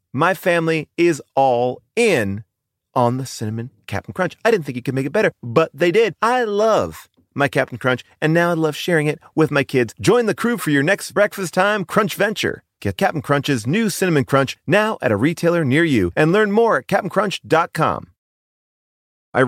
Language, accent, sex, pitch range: English, American, male, 120-195 Hz